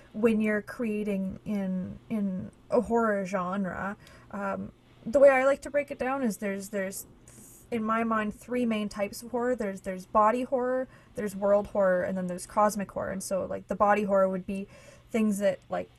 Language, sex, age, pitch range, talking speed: English, female, 20-39, 185-210 Hz, 195 wpm